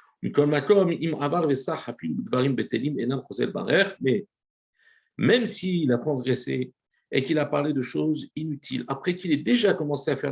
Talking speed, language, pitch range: 110 wpm, French, 135-190 Hz